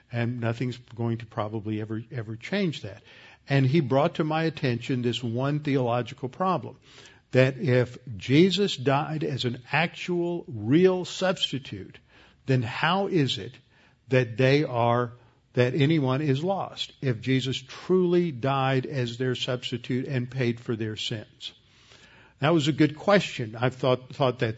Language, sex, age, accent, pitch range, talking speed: English, male, 50-69, American, 125-155 Hz, 145 wpm